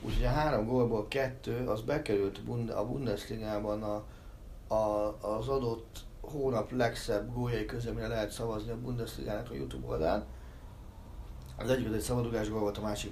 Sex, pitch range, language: male, 90-115 Hz, Hungarian